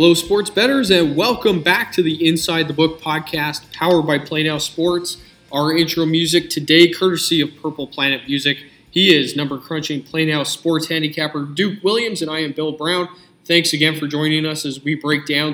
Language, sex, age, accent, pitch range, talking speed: English, male, 20-39, American, 145-165 Hz, 180 wpm